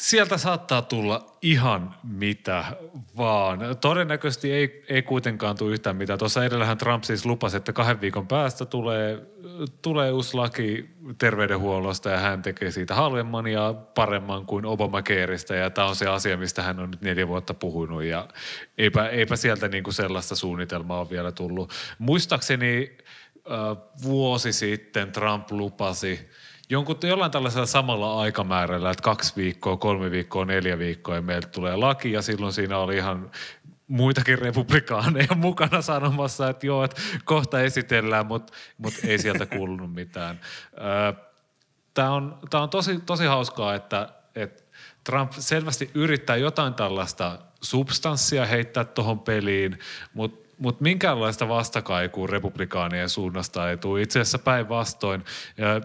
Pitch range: 95-135 Hz